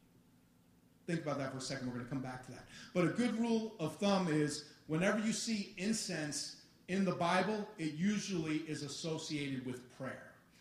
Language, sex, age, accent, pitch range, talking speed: English, male, 40-59, American, 140-190 Hz, 185 wpm